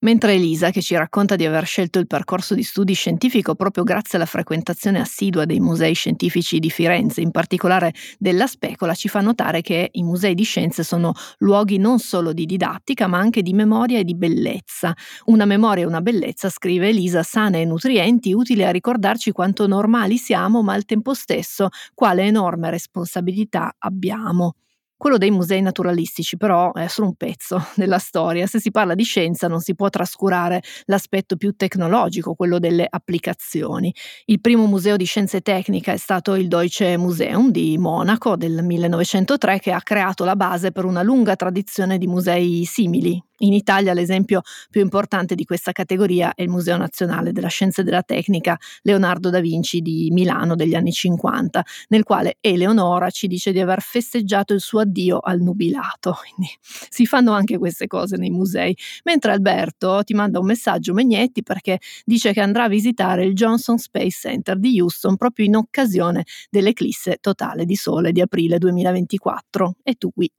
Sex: female